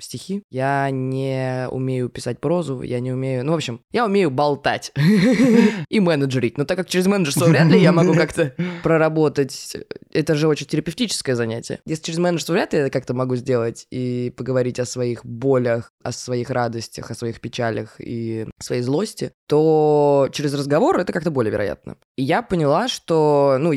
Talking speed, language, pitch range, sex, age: 175 wpm, Russian, 125-165 Hz, female, 20-39